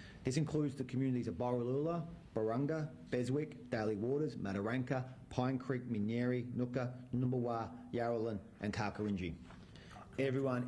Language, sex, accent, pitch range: English, male, Australian, 95-120 Hz